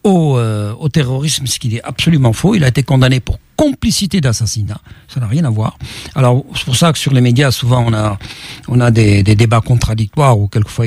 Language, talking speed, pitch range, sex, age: French, 220 wpm, 125-170 Hz, male, 60-79